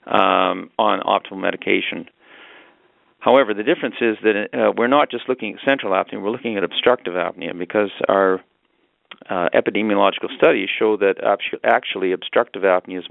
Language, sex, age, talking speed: English, male, 40-59, 155 wpm